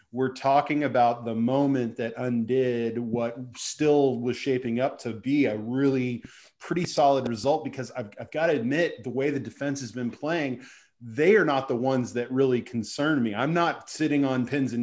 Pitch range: 120-140 Hz